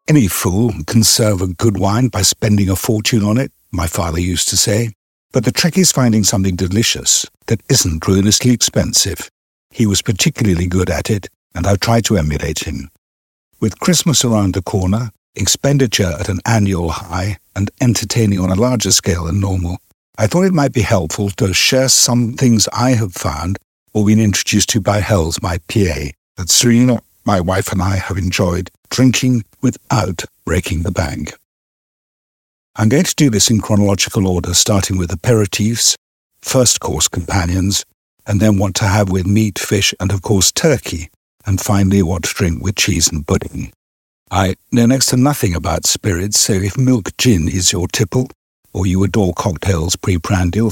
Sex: male